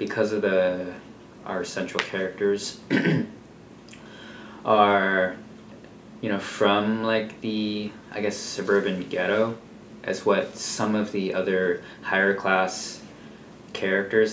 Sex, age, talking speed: male, 20-39, 100 wpm